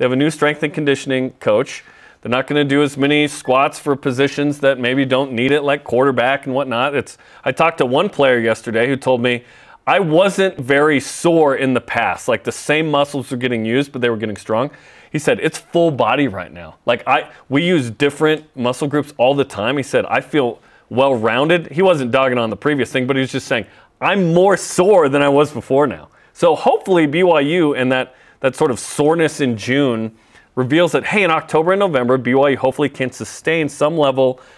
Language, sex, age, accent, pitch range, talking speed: English, male, 30-49, American, 130-160 Hz, 210 wpm